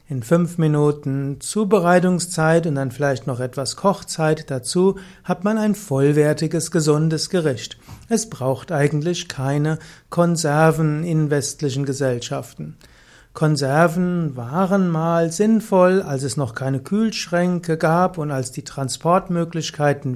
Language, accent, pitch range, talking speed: German, German, 140-175 Hz, 115 wpm